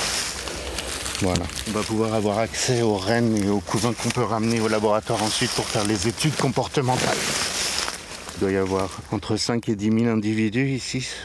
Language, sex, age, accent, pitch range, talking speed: French, male, 50-69, French, 95-120 Hz, 175 wpm